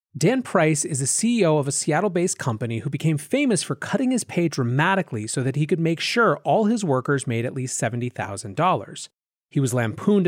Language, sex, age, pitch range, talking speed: English, male, 30-49, 125-190 Hz, 200 wpm